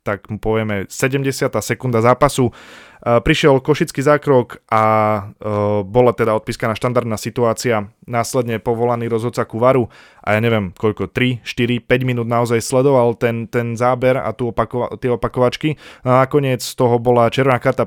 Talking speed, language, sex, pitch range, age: 150 wpm, Slovak, male, 110-125 Hz, 20-39